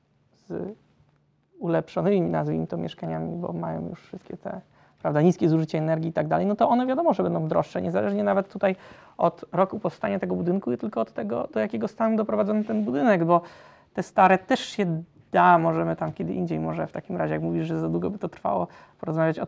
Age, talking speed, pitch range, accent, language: 20-39, 205 wpm, 155-190 Hz, native, Polish